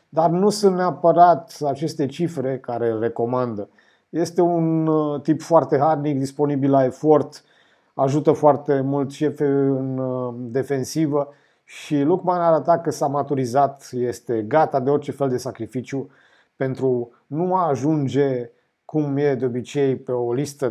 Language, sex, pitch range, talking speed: Romanian, male, 120-155 Hz, 135 wpm